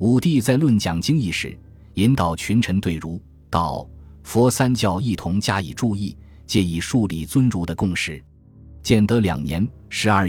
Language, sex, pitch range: Chinese, male, 85-110 Hz